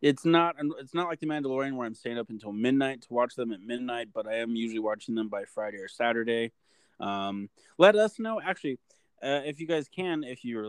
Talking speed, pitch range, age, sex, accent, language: 225 wpm, 110-145 Hz, 20-39, male, American, English